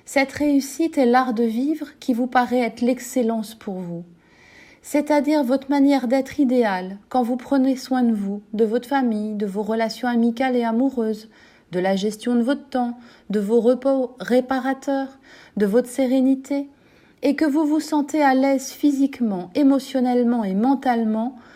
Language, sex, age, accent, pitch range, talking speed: French, female, 30-49, French, 220-275 Hz, 160 wpm